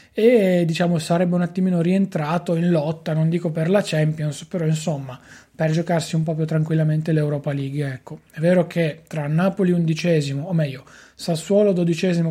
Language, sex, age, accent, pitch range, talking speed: Italian, male, 30-49, native, 150-175 Hz, 165 wpm